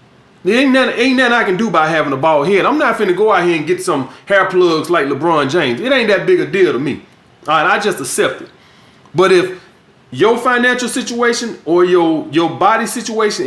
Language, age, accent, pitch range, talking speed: English, 30-49, American, 180-230 Hz, 220 wpm